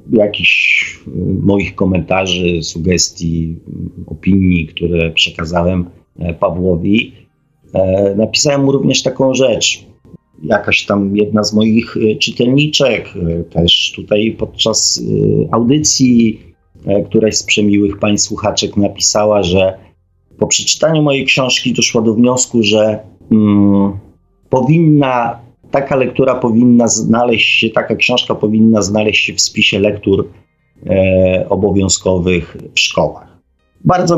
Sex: male